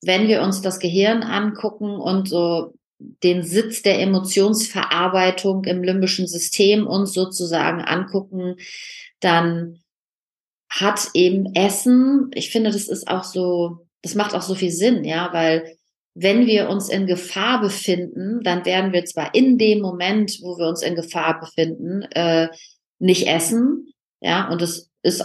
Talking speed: 145 wpm